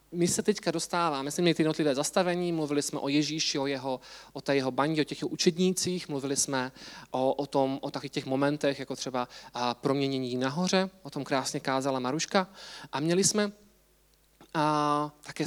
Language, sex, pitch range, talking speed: Czech, male, 140-170 Hz, 180 wpm